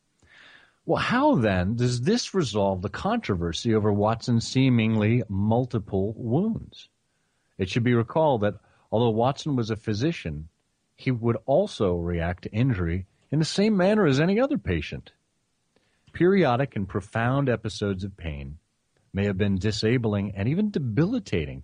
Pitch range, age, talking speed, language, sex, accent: 95-135 Hz, 40-59, 140 wpm, English, male, American